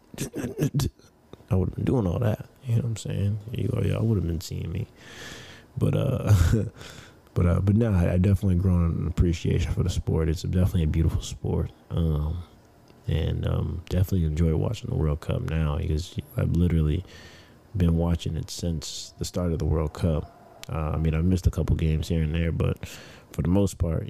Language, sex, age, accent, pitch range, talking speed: English, male, 20-39, American, 80-95 Hz, 195 wpm